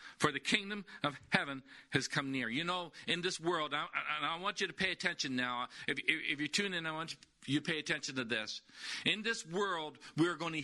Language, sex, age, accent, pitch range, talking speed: English, male, 50-69, American, 155-210 Hz, 220 wpm